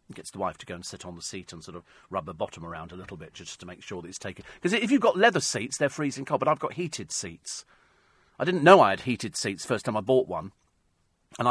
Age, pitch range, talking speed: 40-59, 110-160 Hz, 285 wpm